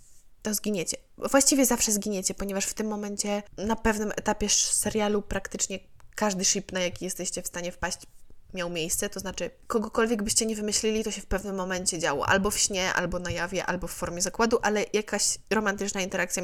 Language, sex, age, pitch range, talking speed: Polish, female, 20-39, 175-205 Hz, 185 wpm